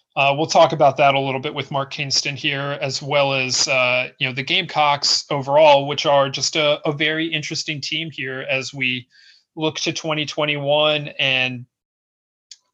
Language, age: English, 30-49